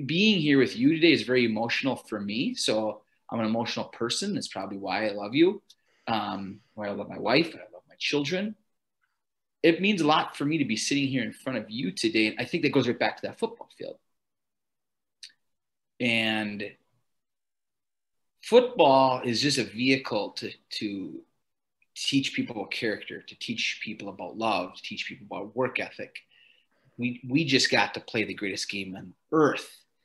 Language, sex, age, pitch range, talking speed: English, male, 30-49, 110-145 Hz, 185 wpm